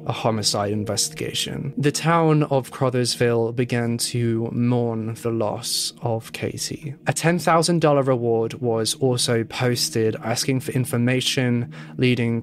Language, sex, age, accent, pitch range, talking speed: English, male, 20-39, British, 115-145 Hz, 115 wpm